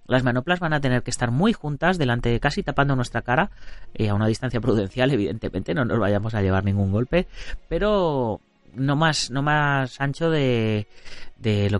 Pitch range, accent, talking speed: 100-140 Hz, Spanish, 190 wpm